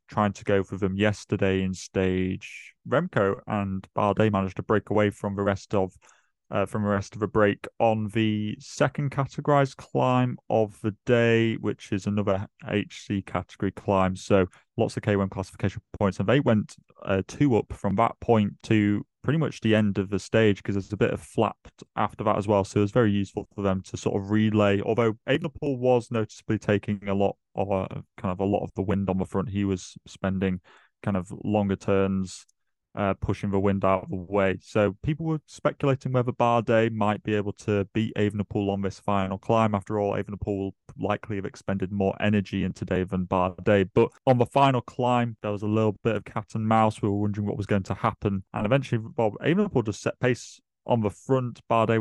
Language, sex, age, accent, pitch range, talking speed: English, male, 20-39, British, 100-115 Hz, 210 wpm